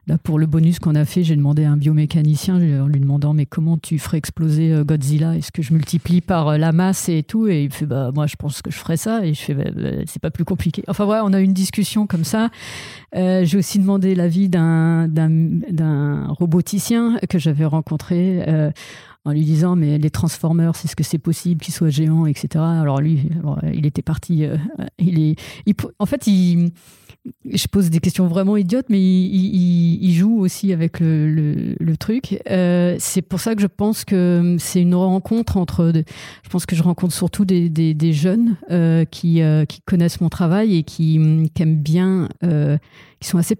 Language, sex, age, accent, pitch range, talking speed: French, female, 40-59, French, 155-185 Hz, 210 wpm